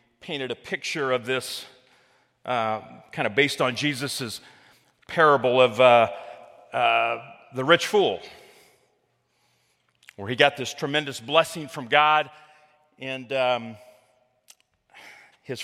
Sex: male